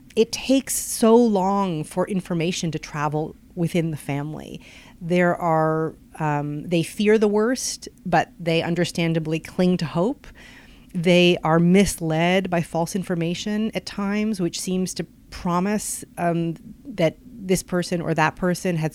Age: 30-49